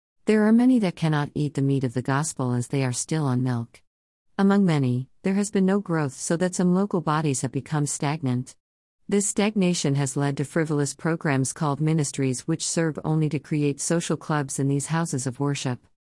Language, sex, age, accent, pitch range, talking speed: English, female, 50-69, American, 130-160 Hz, 195 wpm